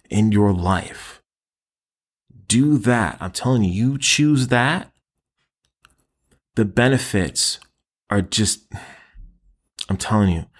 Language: English